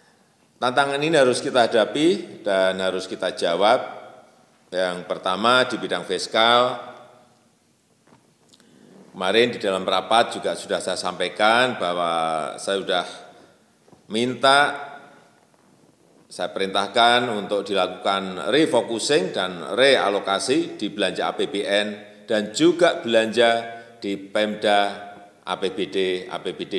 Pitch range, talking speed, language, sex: 100-135 Hz, 95 wpm, Indonesian, male